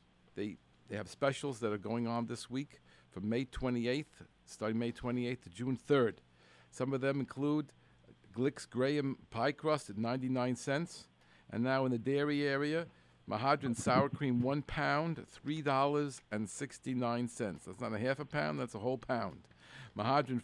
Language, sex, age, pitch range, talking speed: English, male, 50-69, 115-140 Hz, 155 wpm